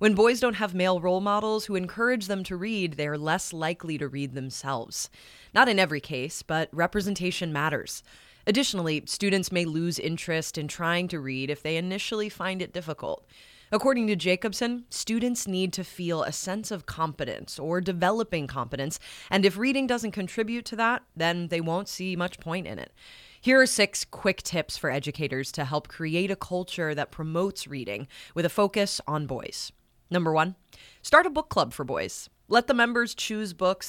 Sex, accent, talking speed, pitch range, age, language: female, American, 180 wpm, 160-210 Hz, 20-39, English